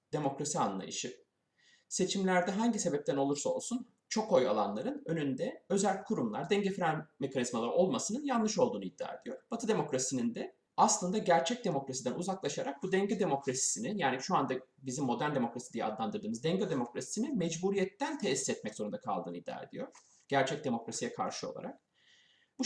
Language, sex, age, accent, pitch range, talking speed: Turkish, male, 30-49, native, 145-220 Hz, 140 wpm